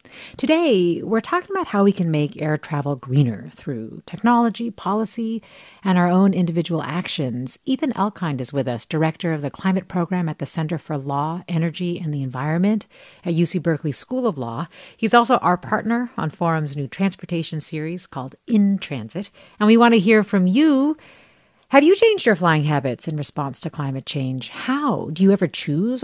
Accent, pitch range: American, 150-225 Hz